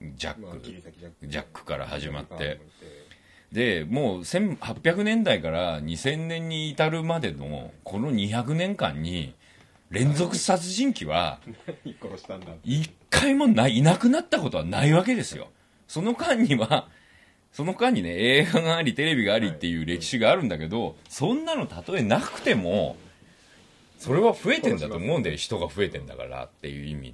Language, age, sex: Japanese, 40-59, male